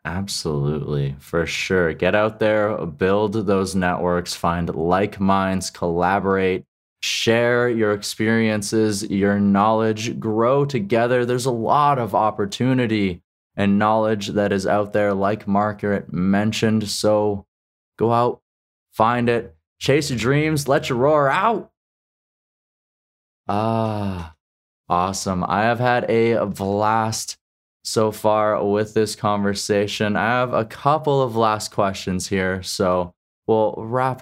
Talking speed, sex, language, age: 120 wpm, male, English, 20-39